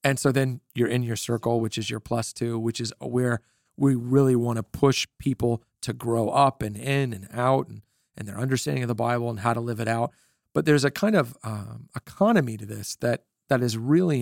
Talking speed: 230 wpm